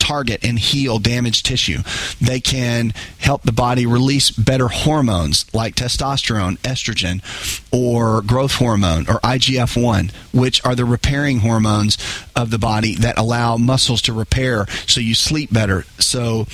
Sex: male